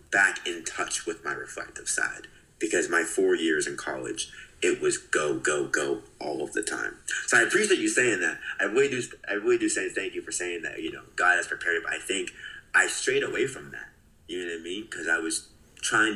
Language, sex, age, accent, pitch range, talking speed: English, male, 20-39, American, 345-400 Hz, 235 wpm